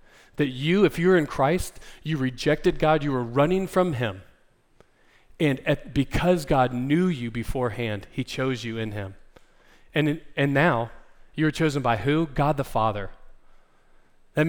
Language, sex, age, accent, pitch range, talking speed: English, male, 40-59, American, 130-170 Hz, 150 wpm